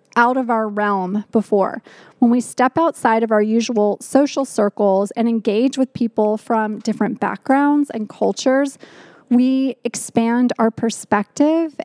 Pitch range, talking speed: 215-260 Hz, 135 wpm